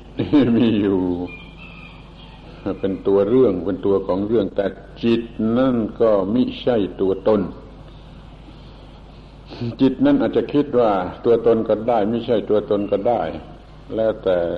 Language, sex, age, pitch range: Thai, male, 70-89, 100-120 Hz